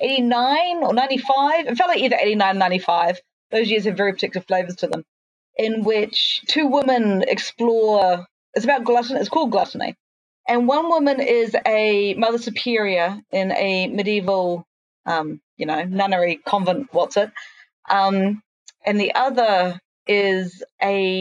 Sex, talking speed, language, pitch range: female, 145 wpm, English, 185-240 Hz